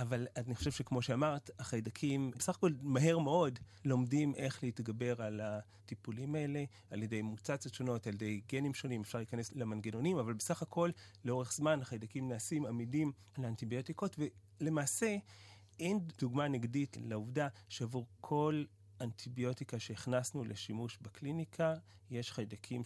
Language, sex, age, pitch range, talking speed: Hebrew, male, 30-49, 110-145 Hz, 130 wpm